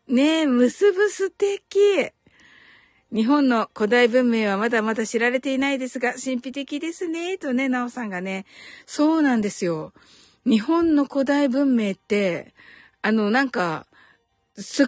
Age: 50-69